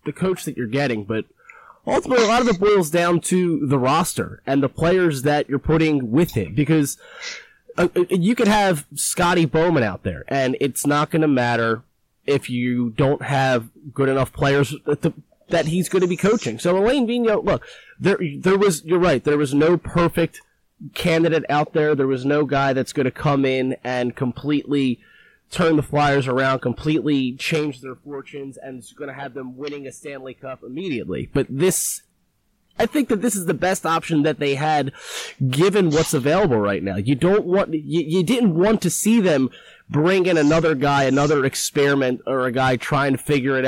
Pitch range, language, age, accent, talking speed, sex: 135-170 Hz, English, 30-49, American, 190 wpm, male